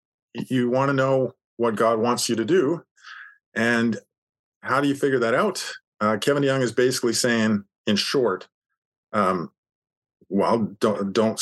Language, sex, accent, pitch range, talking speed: English, male, American, 120-150 Hz, 150 wpm